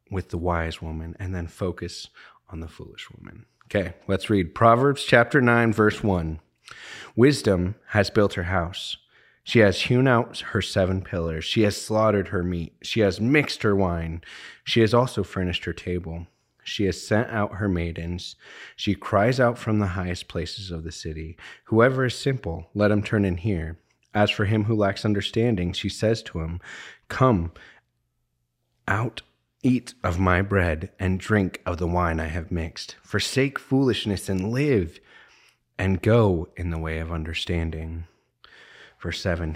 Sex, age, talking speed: male, 30-49, 165 wpm